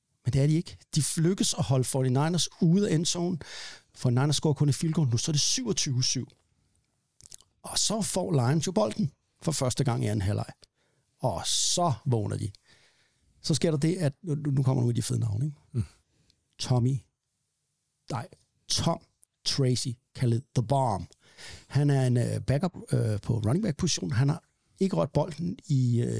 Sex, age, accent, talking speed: male, 60-79, native, 165 wpm